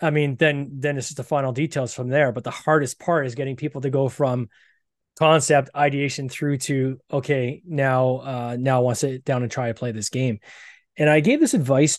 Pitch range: 125-150 Hz